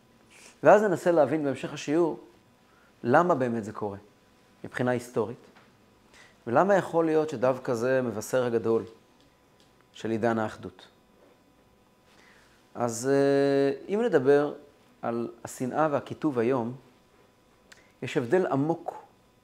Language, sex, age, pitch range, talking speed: Hebrew, male, 30-49, 110-130 Hz, 95 wpm